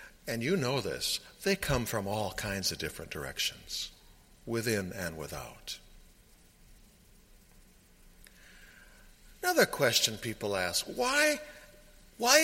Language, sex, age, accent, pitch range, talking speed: English, male, 60-79, American, 130-180 Hz, 100 wpm